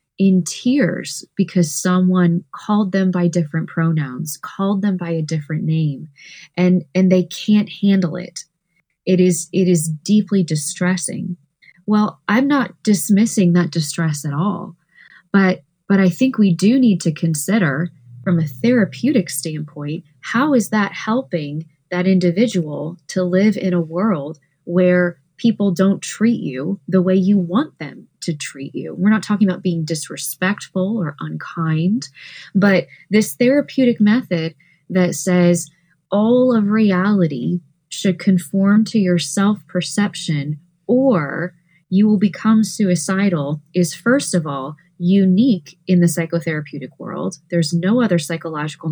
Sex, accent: female, American